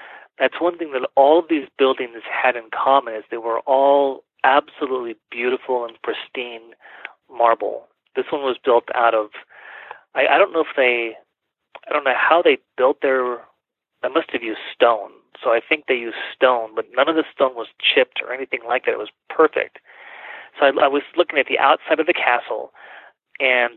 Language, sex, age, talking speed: English, male, 30-49, 190 wpm